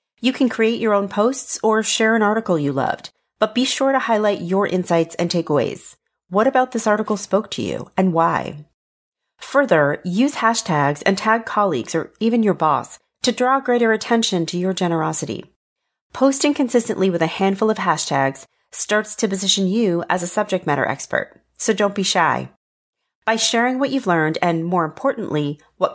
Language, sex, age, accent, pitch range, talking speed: English, female, 40-59, American, 165-225 Hz, 175 wpm